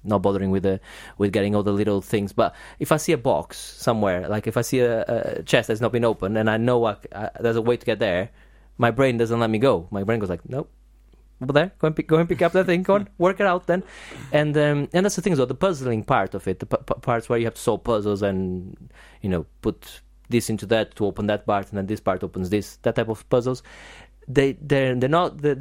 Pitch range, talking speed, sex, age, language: 105-145 Hz, 265 wpm, male, 20-39, English